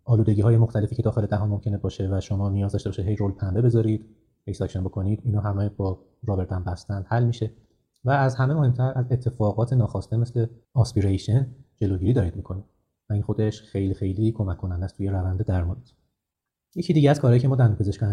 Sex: male